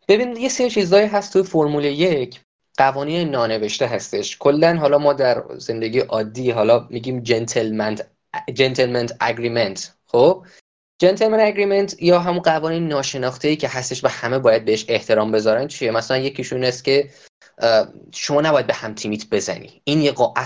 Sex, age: male, 20-39